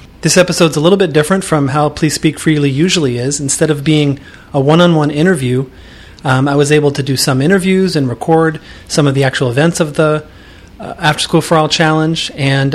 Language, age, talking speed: English, 30-49, 200 wpm